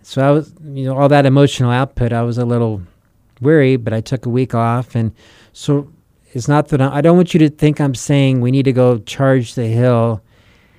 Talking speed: 230 wpm